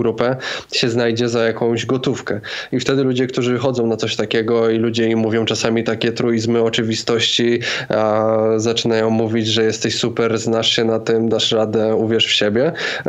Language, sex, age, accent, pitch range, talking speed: Polish, male, 20-39, native, 115-125 Hz, 165 wpm